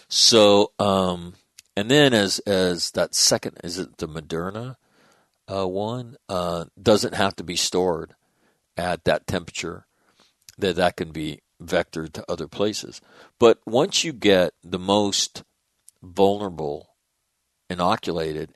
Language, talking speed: English, 125 wpm